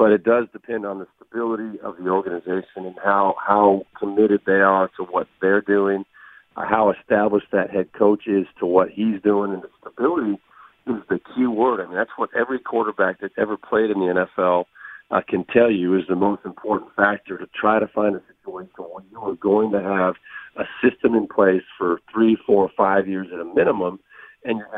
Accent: American